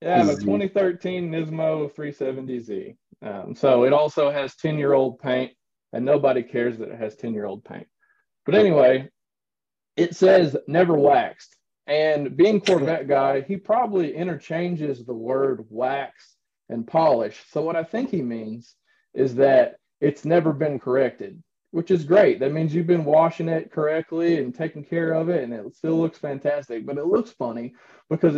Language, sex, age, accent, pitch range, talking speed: English, male, 30-49, American, 135-180 Hz, 160 wpm